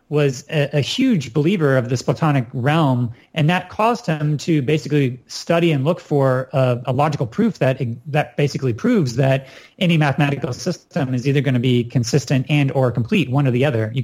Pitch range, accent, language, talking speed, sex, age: 130-155 Hz, American, English, 195 wpm, male, 30-49